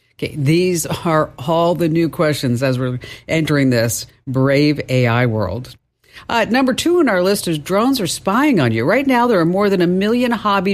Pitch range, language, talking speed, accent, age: 125-170 Hz, English, 195 wpm, American, 50-69